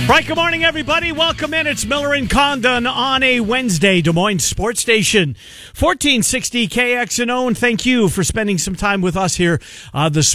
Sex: male